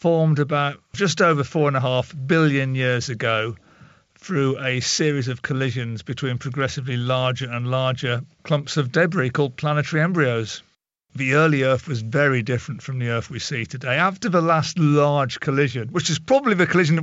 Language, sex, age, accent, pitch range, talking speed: English, male, 50-69, British, 130-155 Hz, 175 wpm